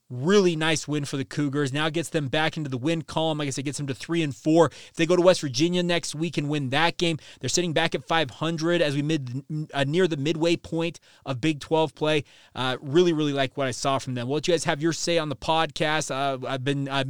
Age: 30-49